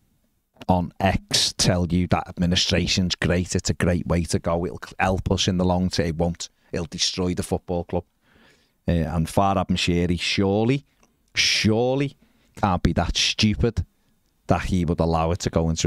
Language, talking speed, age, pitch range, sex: English, 170 wpm, 30-49, 85-105 Hz, male